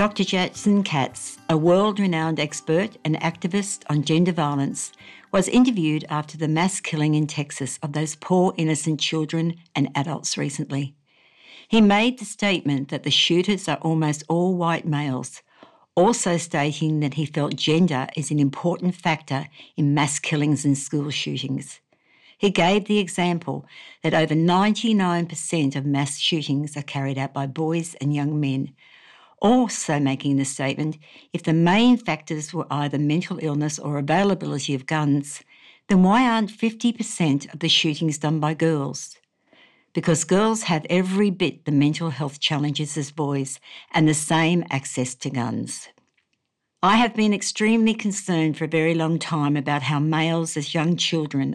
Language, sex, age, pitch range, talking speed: English, female, 60-79, 145-175 Hz, 155 wpm